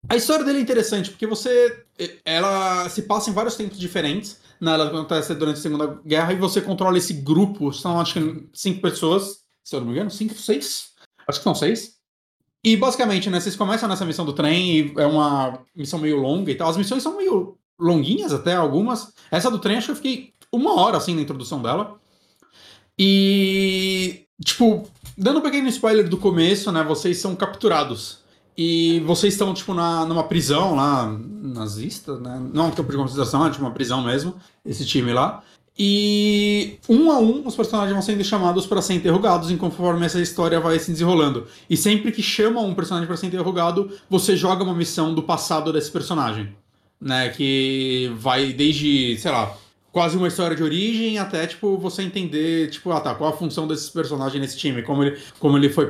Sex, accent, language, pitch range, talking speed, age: male, Brazilian, Portuguese, 150-200 Hz, 195 wpm, 30-49